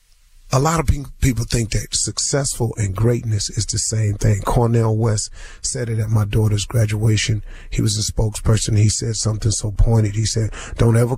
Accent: American